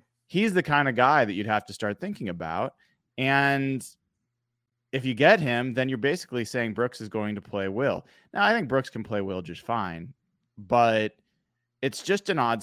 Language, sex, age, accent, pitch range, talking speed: English, male, 30-49, American, 100-130 Hz, 195 wpm